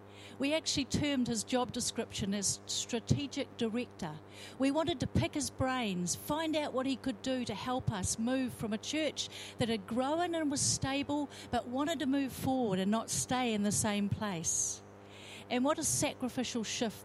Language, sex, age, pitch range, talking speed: English, female, 50-69, 185-260 Hz, 180 wpm